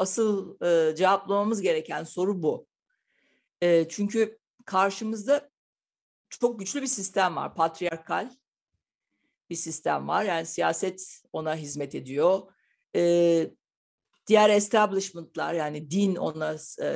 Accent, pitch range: native, 170-225 Hz